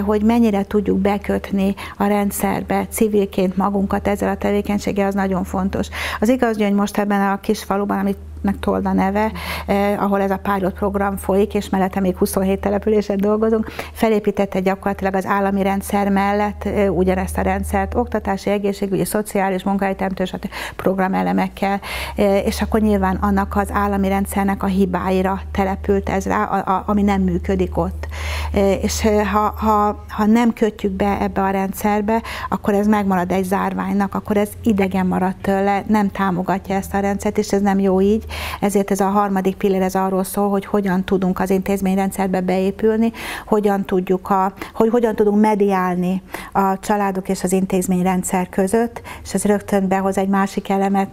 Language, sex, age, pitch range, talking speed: Hungarian, female, 60-79, 190-205 Hz, 155 wpm